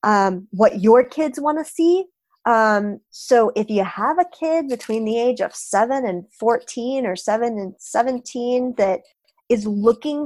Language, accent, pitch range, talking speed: English, American, 185-245 Hz, 160 wpm